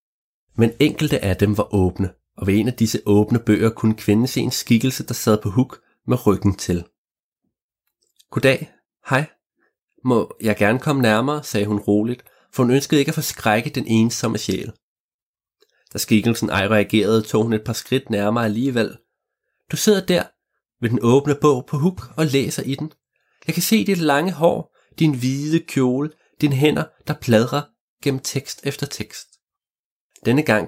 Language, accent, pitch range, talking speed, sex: Danish, native, 105-135 Hz, 170 wpm, male